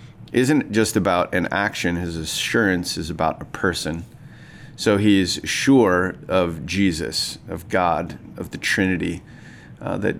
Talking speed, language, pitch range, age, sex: 140 wpm, English, 85-105 Hz, 30-49, male